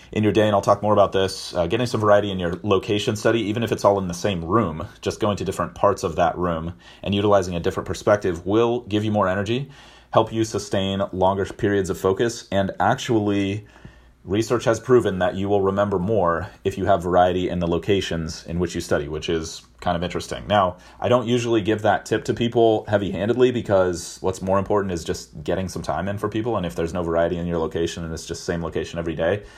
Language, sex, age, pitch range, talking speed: English, male, 30-49, 85-105 Hz, 230 wpm